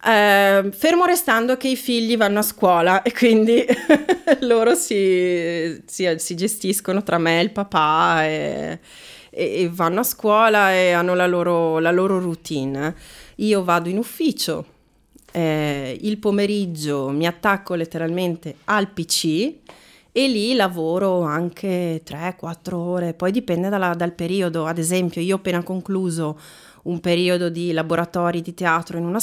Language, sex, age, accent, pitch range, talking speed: Italian, female, 30-49, native, 165-195 Hz, 140 wpm